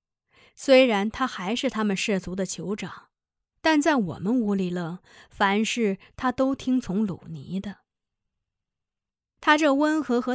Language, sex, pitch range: Chinese, female, 180-255 Hz